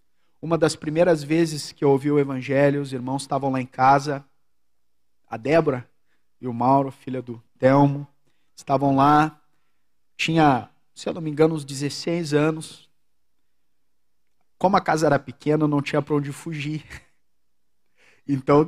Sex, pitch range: male, 135-175 Hz